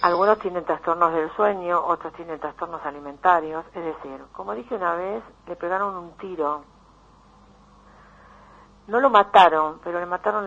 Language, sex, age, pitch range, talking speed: Spanish, female, 50-69, 160-195 Hz, 145 wpm